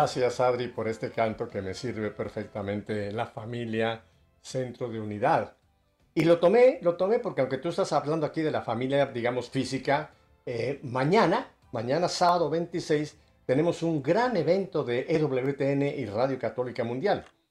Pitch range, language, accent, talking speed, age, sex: 120-165 Hz, Spanish, Mexican, 155 wpm, 50-69, male